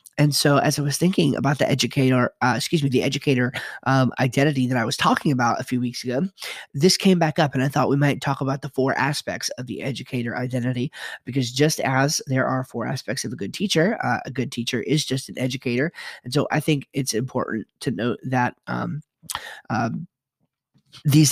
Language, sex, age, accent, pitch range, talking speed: English, male, 30-49, American, 130-150 Hz, 210 wpm